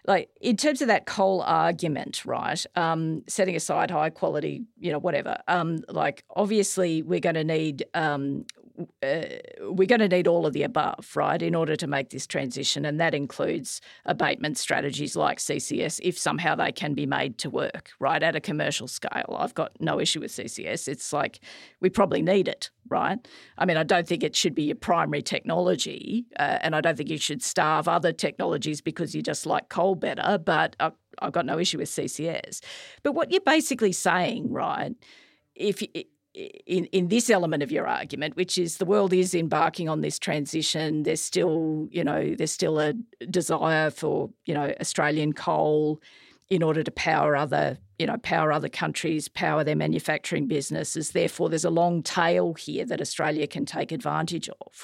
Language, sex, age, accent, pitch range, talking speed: English, female, 40-59, Australian, 155-190 Hz, 185 wpm